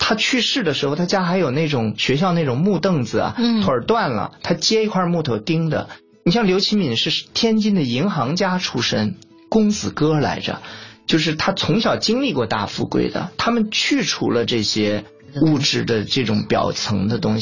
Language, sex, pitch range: Chinese, male, 110-180 Hz